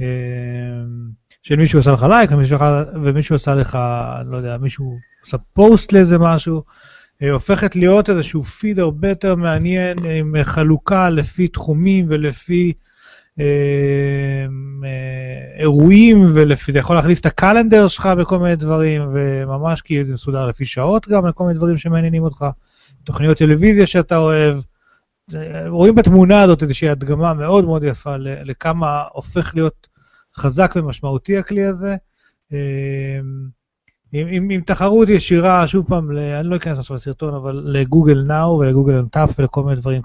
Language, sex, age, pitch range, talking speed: Hebrew, male, 30-49, 135-175 Hz, 140 wpm